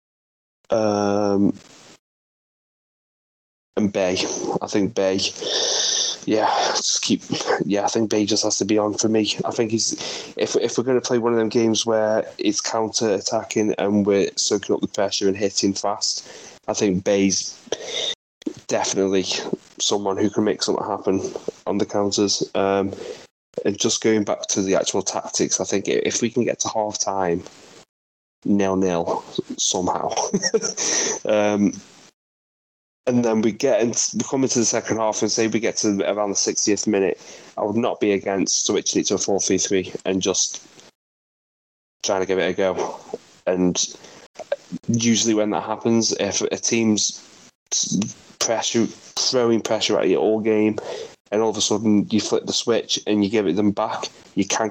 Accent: British